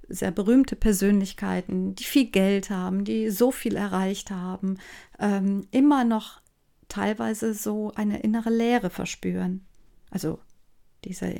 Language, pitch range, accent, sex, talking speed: German, 185-230 Hz, German, female, 120 wpm